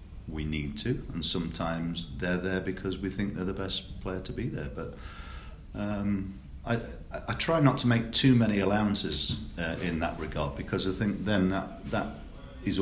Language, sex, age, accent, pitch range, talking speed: English, male, 40-59, British, 75-95 Hz, 190 wpm